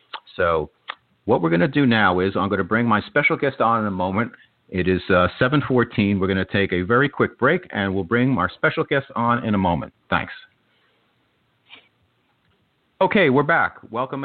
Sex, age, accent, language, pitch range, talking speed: male, 50-69, American, English, 100-130 Hz, 200 wpm